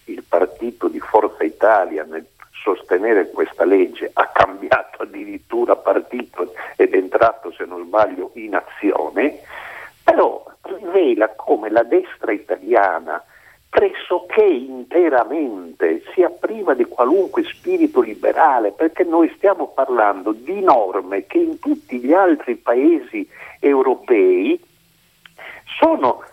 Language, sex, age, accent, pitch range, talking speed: Italian, male, 50-69, native, 320-400 Hz, 110 wpm